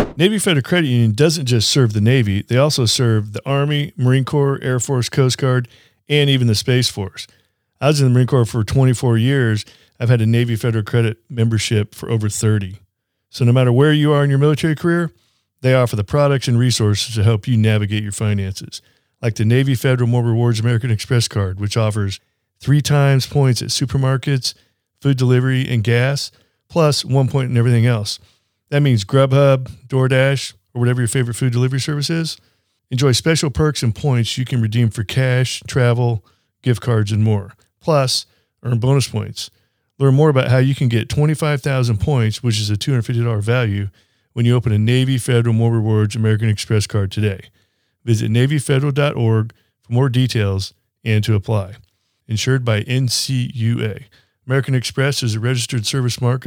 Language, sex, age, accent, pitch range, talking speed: English, male, 40-59, American, 110-135 Hz, 175 wpm